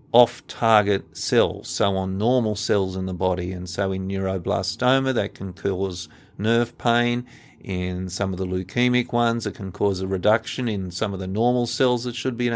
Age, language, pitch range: 50-69, English, 100-125 Hz